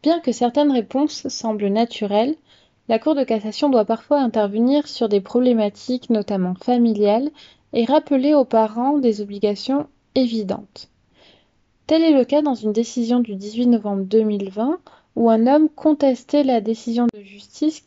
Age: 20-39